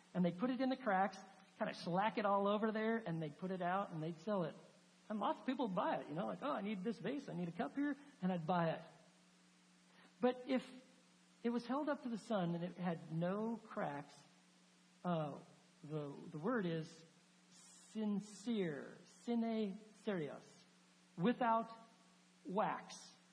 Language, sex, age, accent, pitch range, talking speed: English, male, 50-69, American, 150-205 Hz, 185 wpm